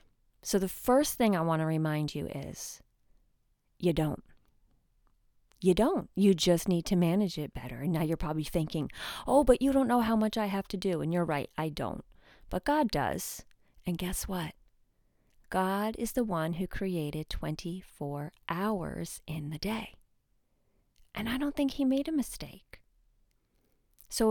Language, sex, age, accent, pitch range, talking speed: English, female, 30-49, American, 170-230 Hz, 170 wpm